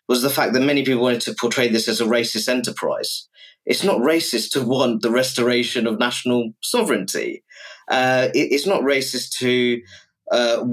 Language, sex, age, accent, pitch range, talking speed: English, male, 30-49, British, 115-135 Hz, 170 wpm